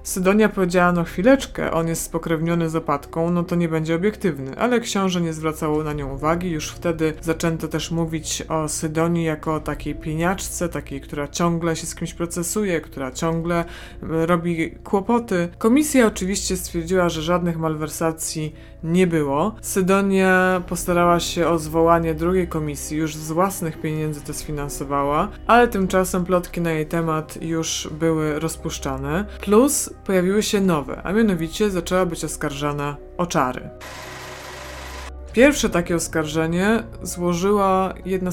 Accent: native